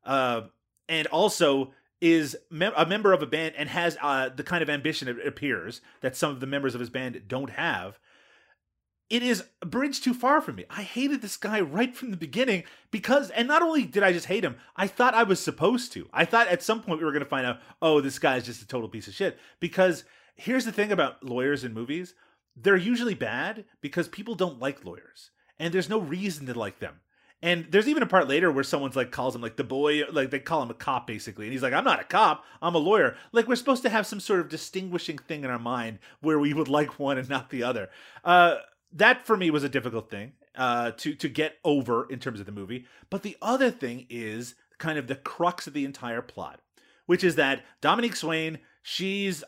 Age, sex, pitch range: 30-49, male, 130-195 Hz